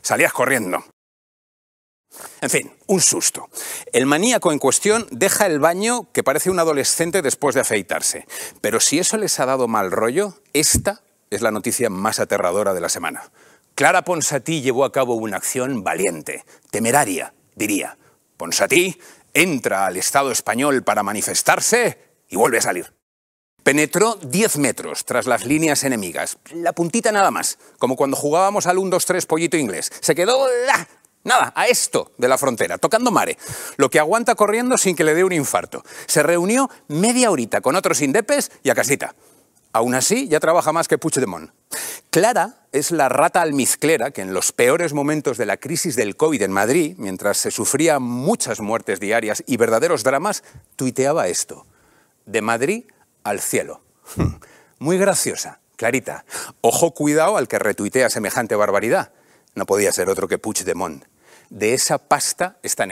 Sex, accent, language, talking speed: male, Spanish, Spanish, 160 wpm